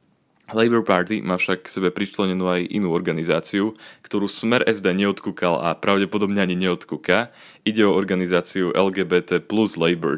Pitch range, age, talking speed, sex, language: 85-100 Hz, 20-39, 140 wpm, male, Slovak